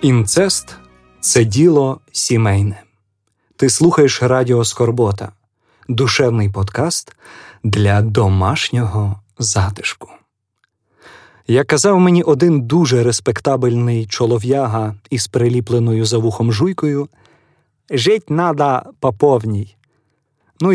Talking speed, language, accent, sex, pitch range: 90 wpm, Ukrainian, native, male, 110-145 Hz